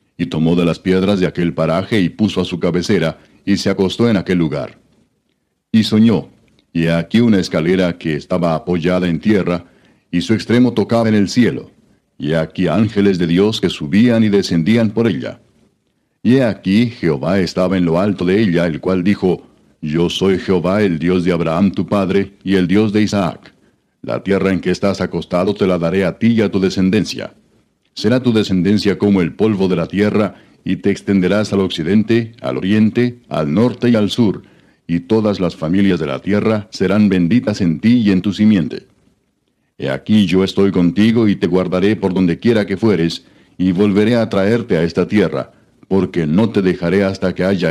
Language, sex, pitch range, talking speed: Spanish, male, 90-105 Hz, 190 wpm